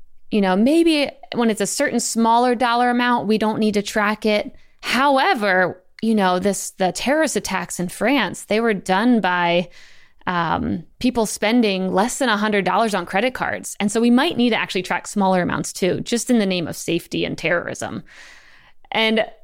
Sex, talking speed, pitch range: female, 180 wpm, 190-235 Hz